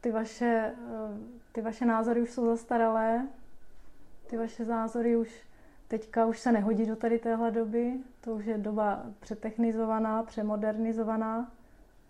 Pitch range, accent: 220-230 Hz, native